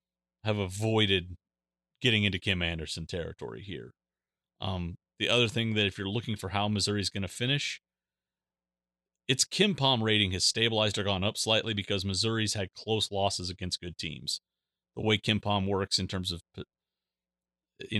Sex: male